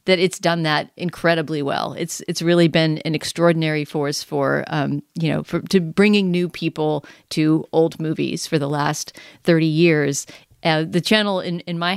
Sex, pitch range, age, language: female, 155-185 Hz, 40-59, English